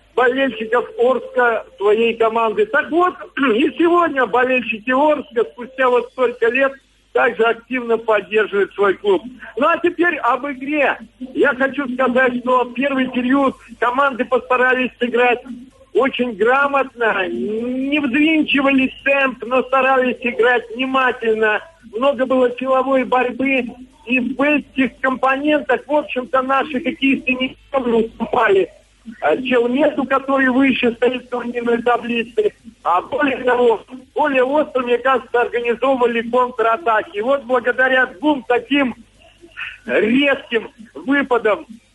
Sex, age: male, 50-69